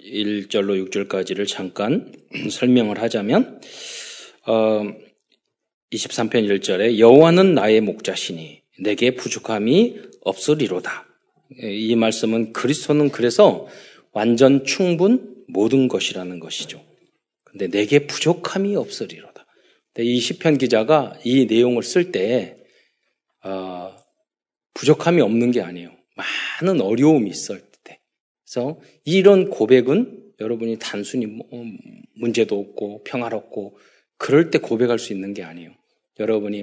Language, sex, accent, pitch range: Korean, male, native, 110-155 Hz